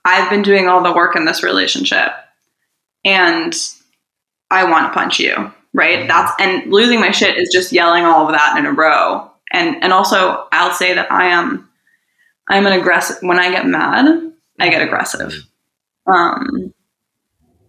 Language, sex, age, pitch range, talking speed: English, female, 20-39, 175-200 Hz, 165 wpm